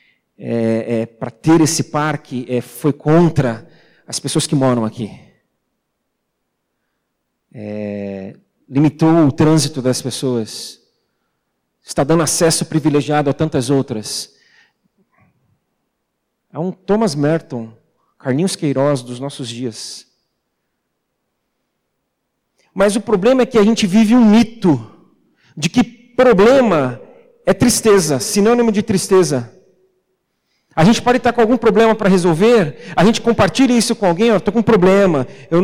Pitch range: 155-220 Hz